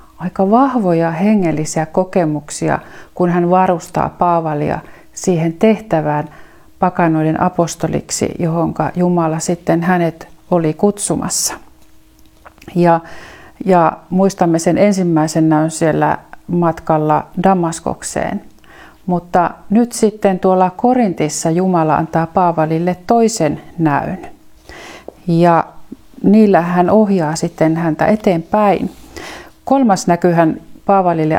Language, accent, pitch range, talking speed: Finnish, native, 160-190 Hz, 90 wpm